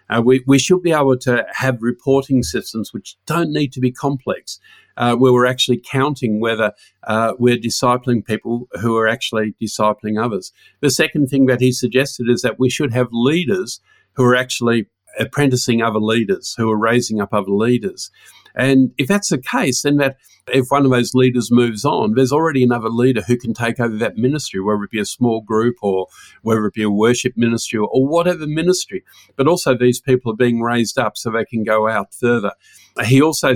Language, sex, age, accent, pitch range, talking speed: English, male, 50-69, Australian, 115-135 Hz, 200 wpm